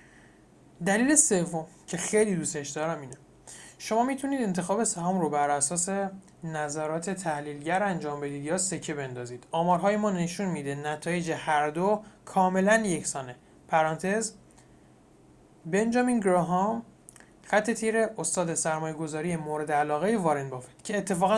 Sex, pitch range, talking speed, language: male, 155-195 Hz, 125 wpm, Persian